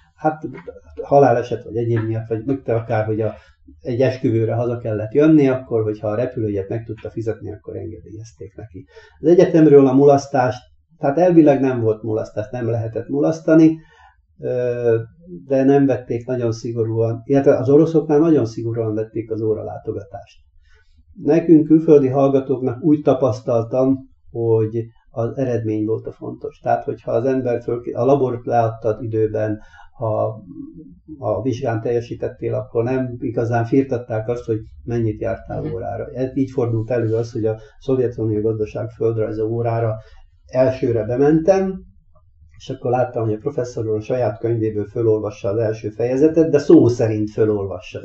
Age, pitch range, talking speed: 50-69, 110-135 Hz, 135 wpm